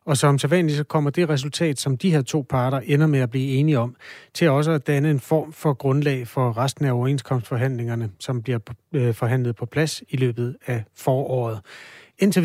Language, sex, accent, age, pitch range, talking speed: Danish, male, native, 30-49, 130-155 Hz, 195 wpm